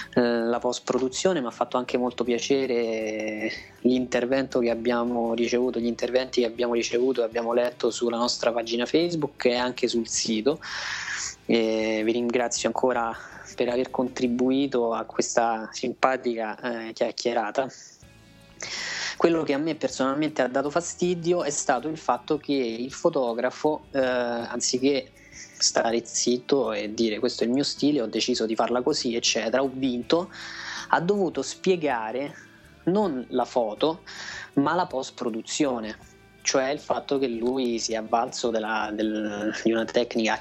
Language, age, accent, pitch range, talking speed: Italian, 20-39, native, 115-135 Hz, 140 wpm